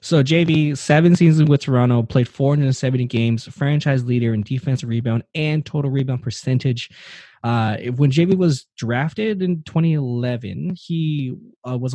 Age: 20-39